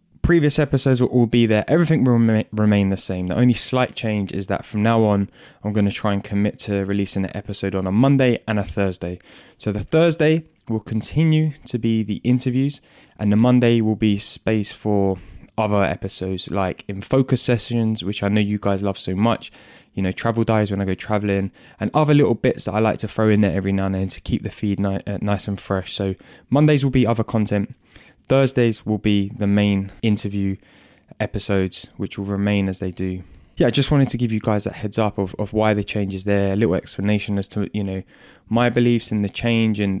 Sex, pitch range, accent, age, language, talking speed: male, 100-115 Hz, British, 10-29, English, 220 wpm